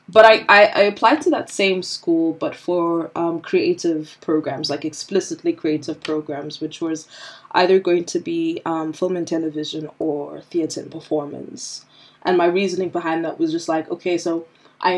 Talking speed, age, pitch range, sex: 170 wpm, 20-39, 160-195 Hz, female